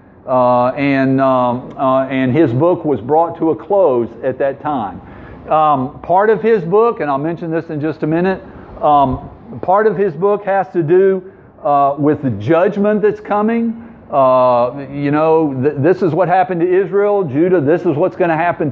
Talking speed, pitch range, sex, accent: 190 wpm, 130-185 Hz, male, American